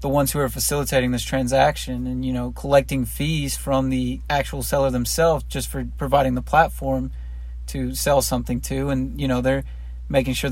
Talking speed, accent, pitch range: 185 wpm, American, 125-140 Hz